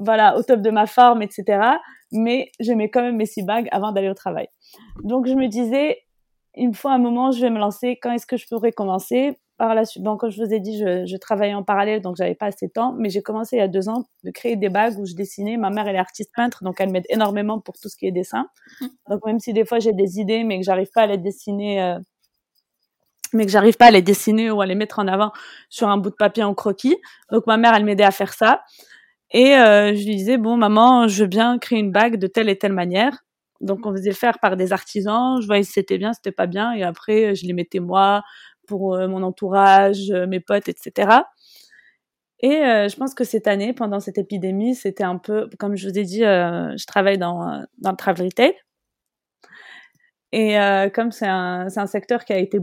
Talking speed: 250 wpm